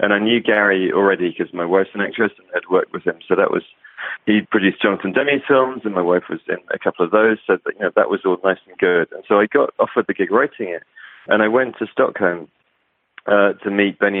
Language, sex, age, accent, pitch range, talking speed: English, male, 30-49, British, 95-115 Hz, 255 wpm